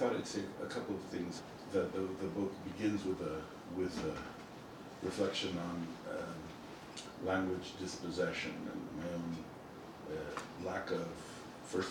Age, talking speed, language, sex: 50-69, 145 wpm, English, male